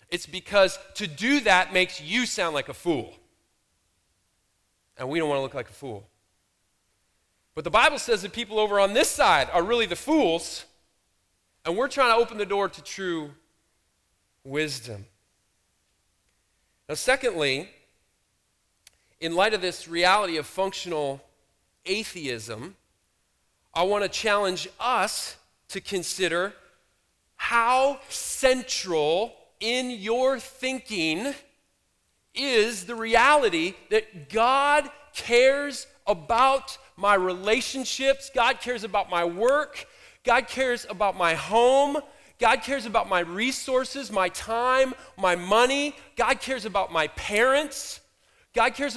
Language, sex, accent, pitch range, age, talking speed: English, male, American, 165-260 Hz, 40-59, 125 wpm